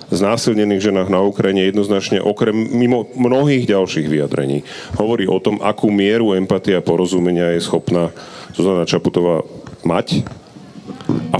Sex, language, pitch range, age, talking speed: male, Slovak, 95-115 Hz, 40-59, 125 wpm